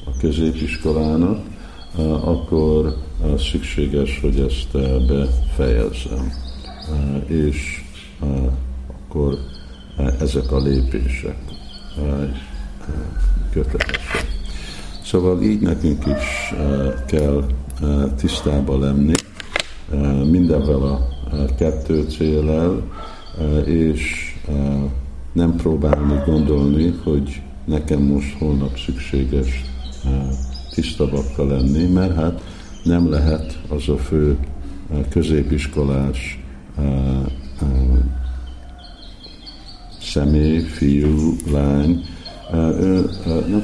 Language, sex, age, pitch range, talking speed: Hungarian, male, 60-79, 70-80 Hz, 65 wpm